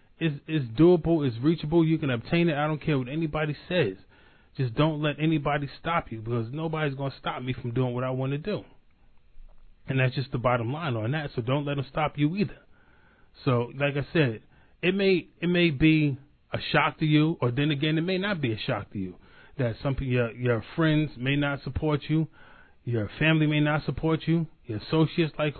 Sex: male